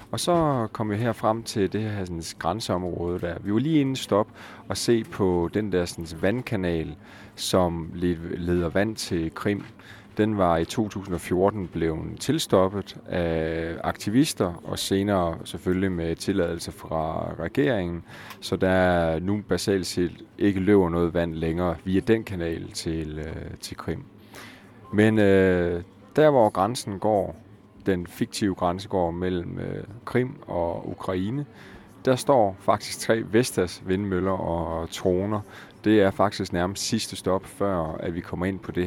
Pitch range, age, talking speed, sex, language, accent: 85-105 Hz, 30-49, 145 wpm, male, Danish, native